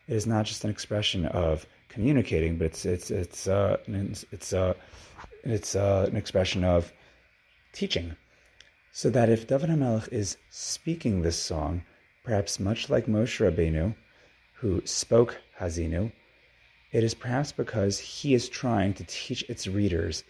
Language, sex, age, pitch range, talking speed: English, male, 30-49, 90-110 Hz, 155 wpm